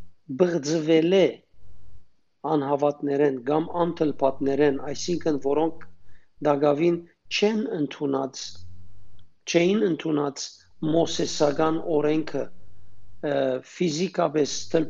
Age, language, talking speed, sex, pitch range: 50-69, English, 60 wpm, male, 100-170 Hz